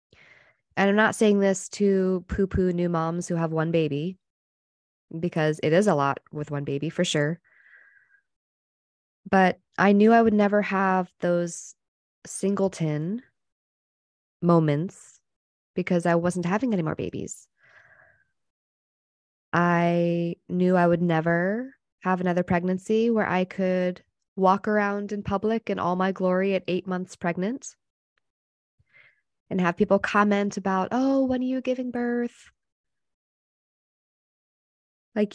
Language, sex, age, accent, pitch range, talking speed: English, female, 20-39, American, 165-200 Hz, 125 wpm